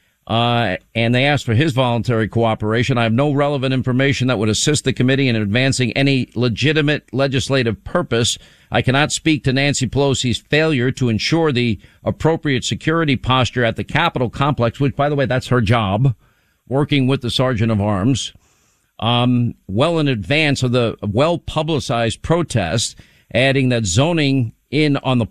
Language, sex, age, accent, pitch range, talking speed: English, male, 50-69, American, 115-145 Hz, 160 wpm